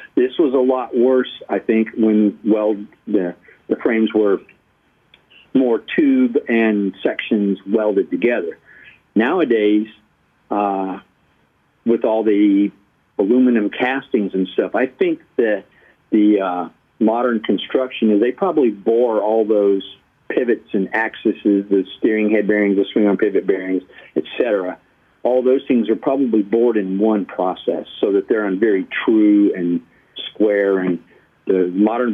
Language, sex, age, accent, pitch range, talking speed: English, male, 50-69, American, 100-115 Hz, 140 wpm